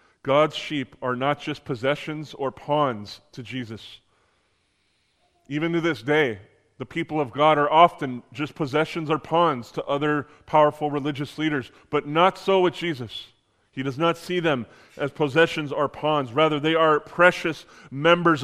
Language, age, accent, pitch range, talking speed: English, 30-49, American, 135-170 Hz, 155 wpm